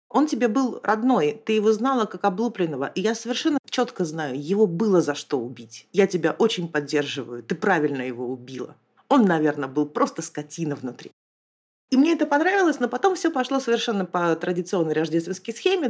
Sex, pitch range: female, 160-240 Hz